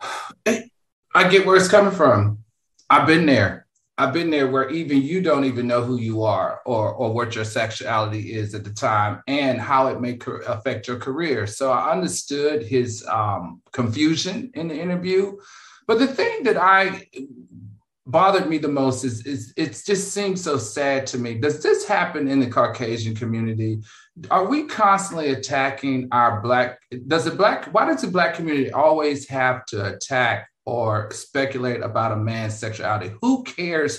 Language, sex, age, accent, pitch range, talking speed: English, male, 40-59, American, 120-170 Hz, 175 wpm